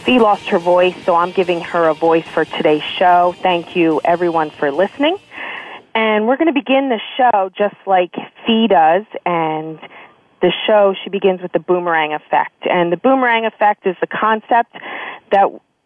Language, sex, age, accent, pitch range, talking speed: English, female, 40-59, American, 175-215 Hz, 175 wpm